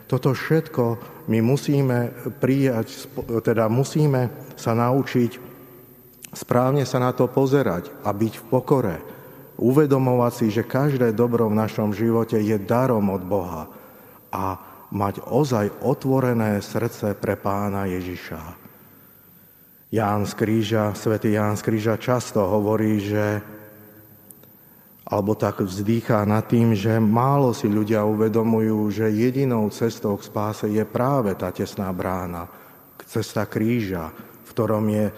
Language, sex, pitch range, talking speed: Slovak, male, 105-125 Hz, 120 wpm